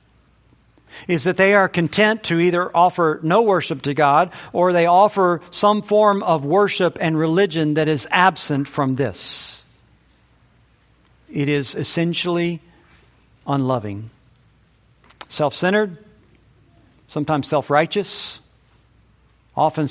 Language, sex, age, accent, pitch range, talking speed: English, male, 50-69, American, 120-155 Hz, 100 wpm